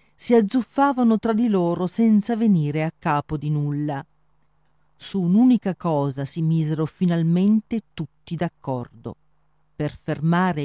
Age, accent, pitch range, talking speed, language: 50-69, native, 155-220 Hz, 120 wpm, Italian